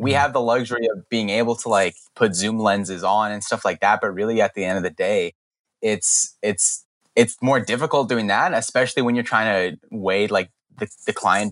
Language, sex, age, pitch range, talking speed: English, male, 10-29, 110-140 Hz, 220 wpm